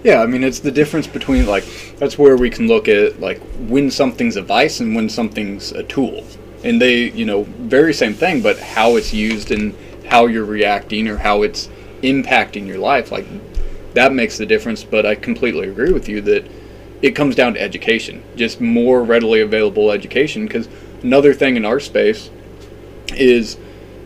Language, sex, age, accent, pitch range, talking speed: English, male, 20-39, American, 115-150 Hz, 185 wpm